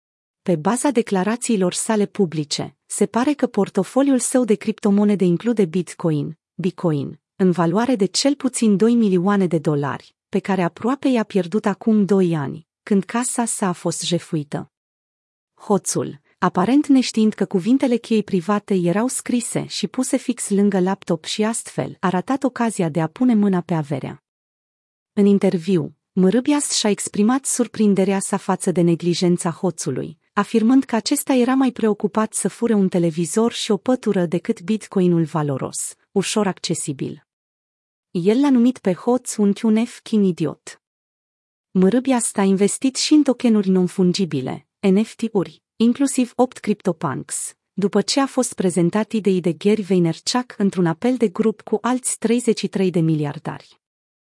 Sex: female